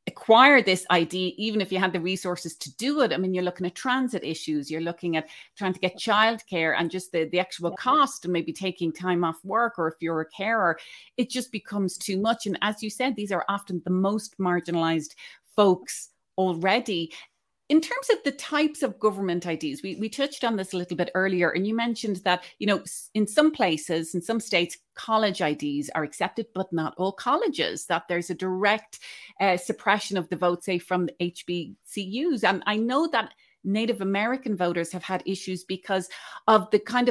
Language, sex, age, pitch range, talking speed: English, female, 30-49, 175-220 Hz, 200 wpm